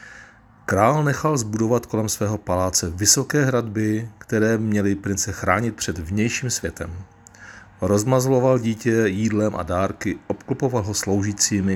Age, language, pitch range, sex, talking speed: 40-59, Czech, 95-120 Hz, male, 115 wpm